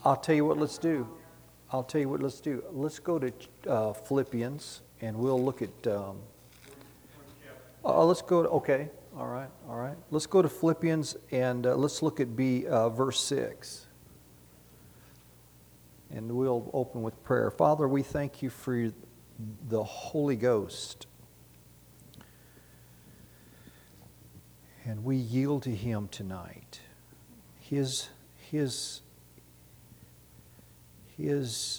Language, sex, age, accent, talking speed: English, male, 50-69, American, 125 wpm